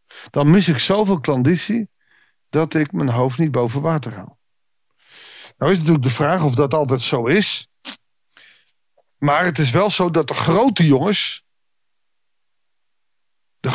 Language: Dutch